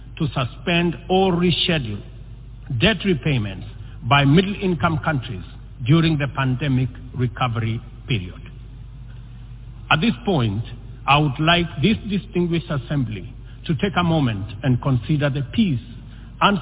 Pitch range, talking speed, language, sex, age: 120-165 Hz, 115 wpm, English, male, 50-69